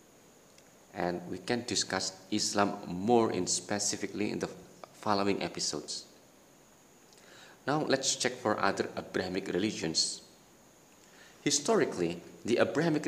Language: English